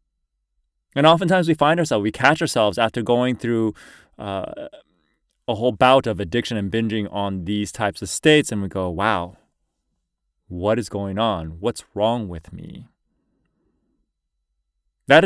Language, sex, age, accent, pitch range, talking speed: English, male, 20-39, American, 90-130 Hz, 145 wpm